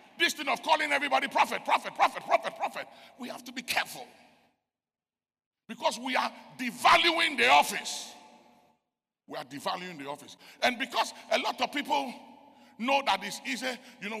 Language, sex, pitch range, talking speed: English, male, 210-255 Hz, 155 wpm